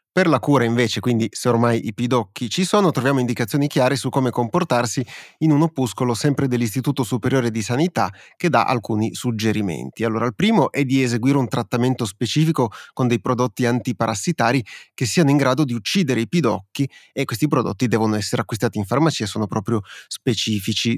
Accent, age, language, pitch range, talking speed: native, 30-49, Italian, 115-135 Hz, 175 wpm